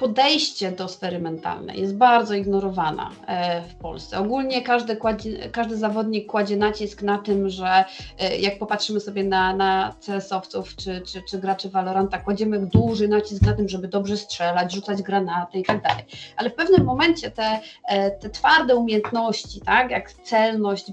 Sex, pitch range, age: female, 195-235 Hz, 30-49